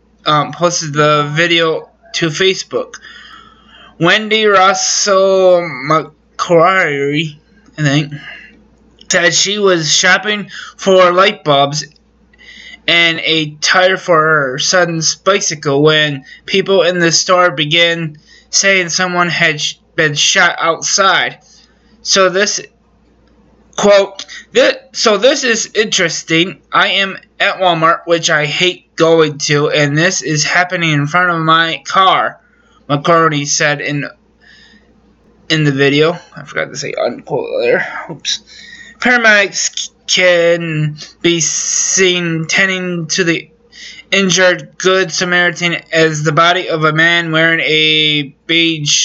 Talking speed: 115 wpm